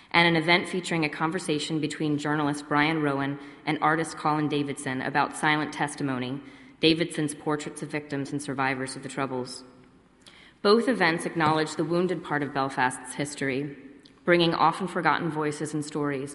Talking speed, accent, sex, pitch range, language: 150 wpm, American, female, 145-170 Hz, English